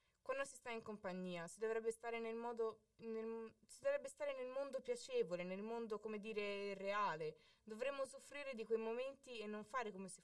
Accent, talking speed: native, 190 wpm